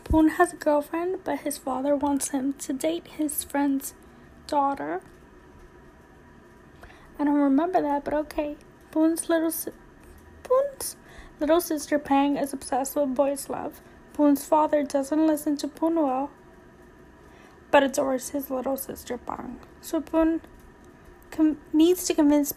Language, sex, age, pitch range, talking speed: English, female, 10-29, 275-305 Hz, 135 wpm